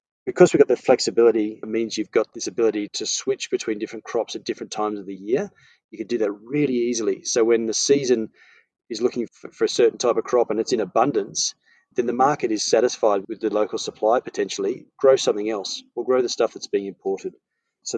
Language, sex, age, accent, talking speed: English, male, 30-49, Australian, 220 wpm